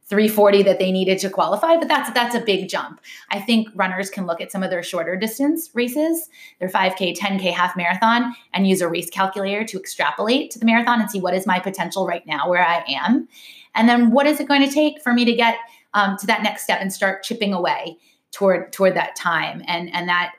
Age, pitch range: 20-39, 175-235 Hz